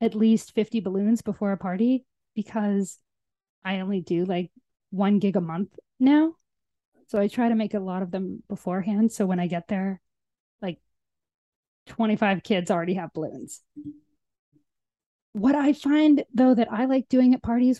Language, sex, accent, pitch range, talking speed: English, female, American, 195-245 Hz, 160 wpm